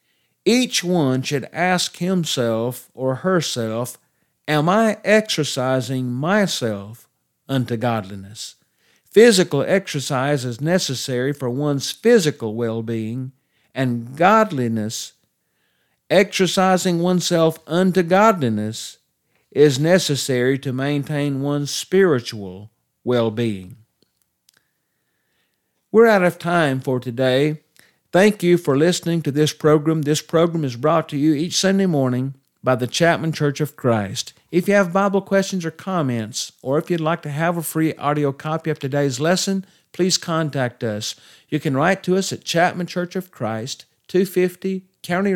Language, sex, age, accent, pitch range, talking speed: English, male, 50-69, American, 130-180 Hz, 130 wpm